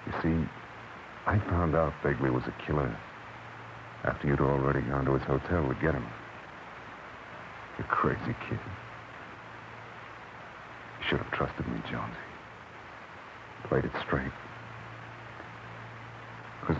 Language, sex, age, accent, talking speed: English, male, 60-79, American, 115 wpm